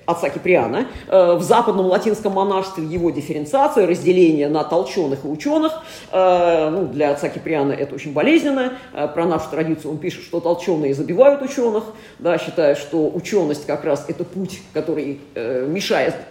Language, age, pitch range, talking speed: Russian, 40-59, 160-235 Hz, 145 wpm